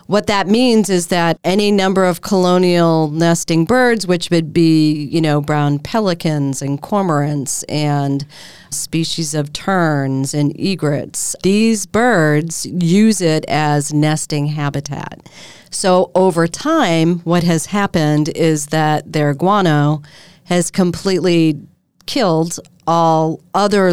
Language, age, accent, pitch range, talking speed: English, 40-59, American, 150-185 Hz, 120 wpm